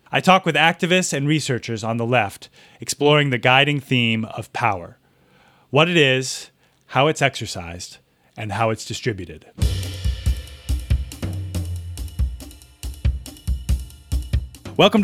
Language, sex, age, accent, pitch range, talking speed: English, male, 30-49, American, 115-145 Hz, 105 wpm